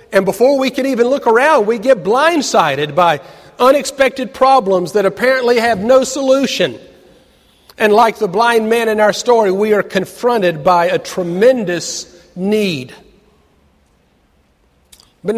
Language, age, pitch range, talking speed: English, 50-69, 170-235 Hz, 135 wpm